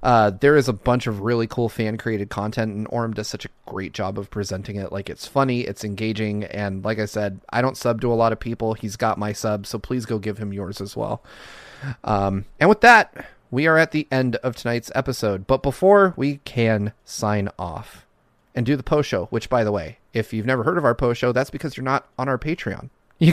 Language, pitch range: English, 110-140 Hz